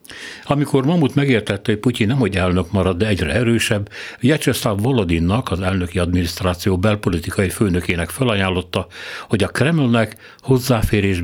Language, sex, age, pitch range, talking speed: Hungarian, male, 60-79, 90-115 Hz, 130 wpm